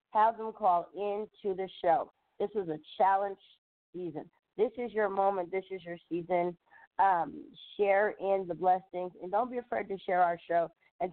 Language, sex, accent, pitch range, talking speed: English, female, American, 170-190 Hz, 180 wpm